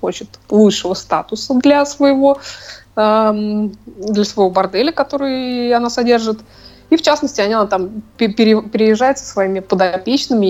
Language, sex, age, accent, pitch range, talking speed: Russian, female, 20-39, native, 185-235 Hz, 110 wpm